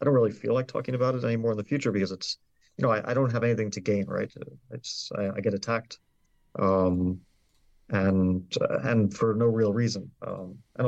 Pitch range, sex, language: 100-115 Hz, male, English